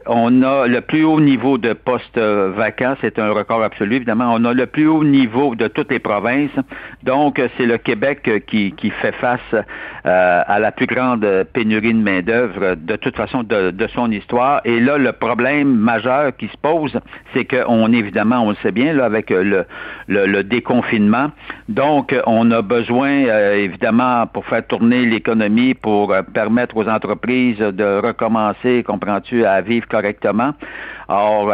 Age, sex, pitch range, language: 60-79, male, 105-125 Hz, French